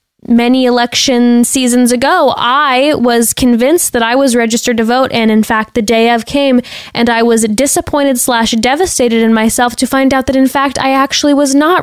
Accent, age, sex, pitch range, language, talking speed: American, 10-29, female, 220-255 Hz, English, 195 wpm